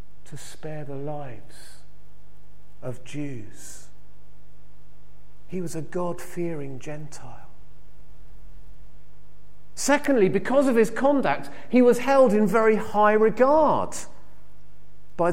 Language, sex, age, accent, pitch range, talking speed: English, male, 40-59, British, 155-240 Hz, 95 wpm